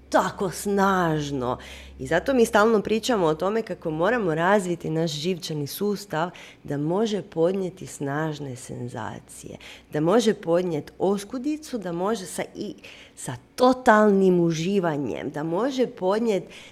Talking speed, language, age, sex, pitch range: 120 wpm, Croatian, 30-49, female, 145-200 Hz